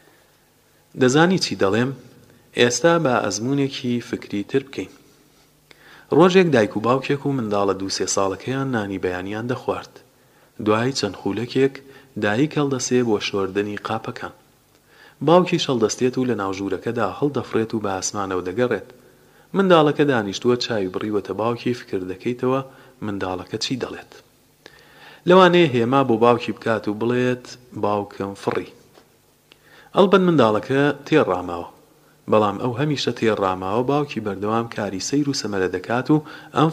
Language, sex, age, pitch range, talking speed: Persian, male, 40-59, 105-135 Hz, 125 wpm